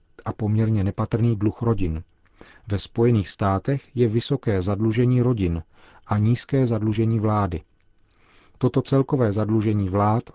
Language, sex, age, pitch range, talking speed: Czech, male, 40-59, 95-115 Hz, 115 wpm